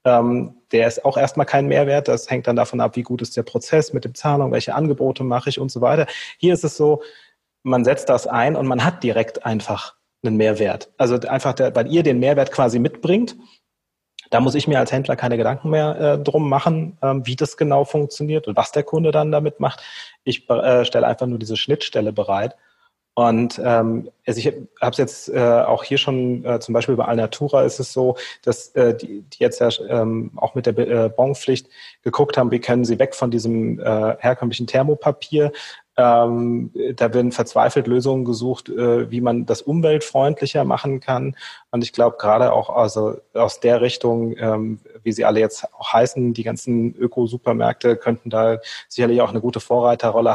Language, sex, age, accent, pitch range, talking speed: German, male, 30-49, German, 115-140 Hz, 190 wpm